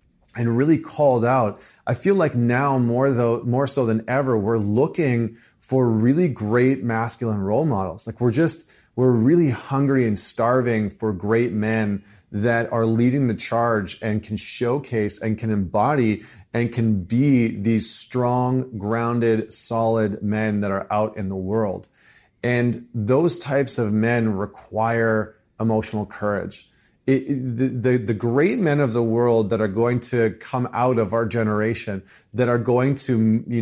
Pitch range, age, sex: 110-125 Hz, 30-49, male